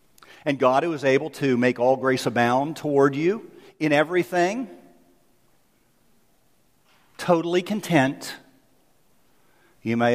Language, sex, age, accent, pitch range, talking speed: English, male, 50-69, American, 115-165 Hz, 105 wpm